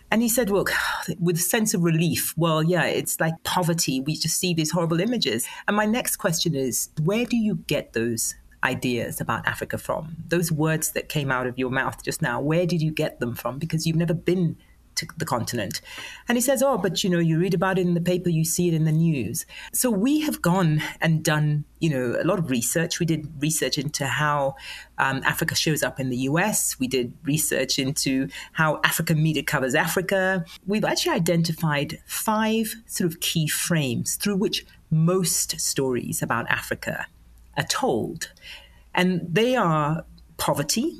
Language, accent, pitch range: English, British, 150-185 Hz